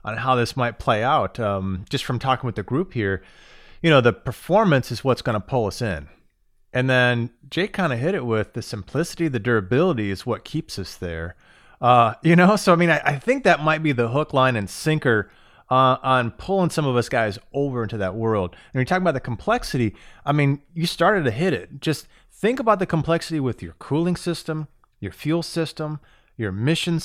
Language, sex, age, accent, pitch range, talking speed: English, male, 30-49, American, 120-165 Hz, 215 wpm